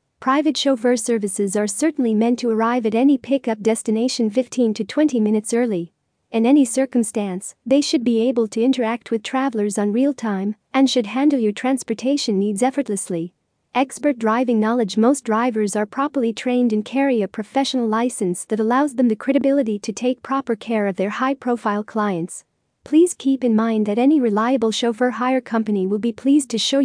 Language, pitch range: English, 220-265 Hz